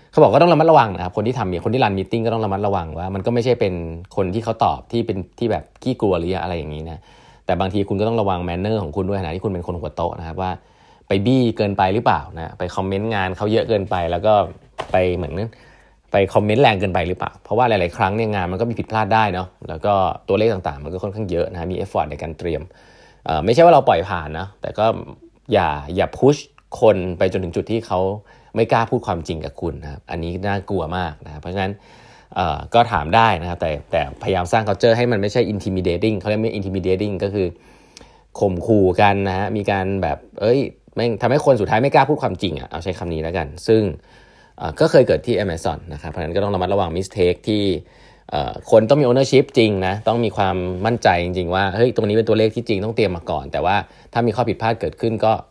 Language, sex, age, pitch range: Thai, male, 20-39, 90-115 Hz